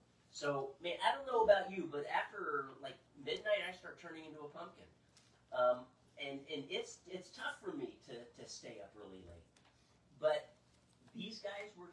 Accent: American